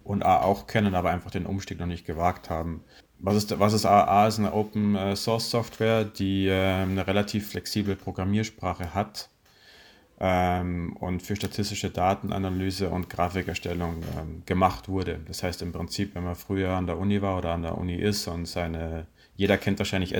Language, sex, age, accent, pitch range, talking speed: German, male, 30-49, German, 85-100 Hz, 170 wpm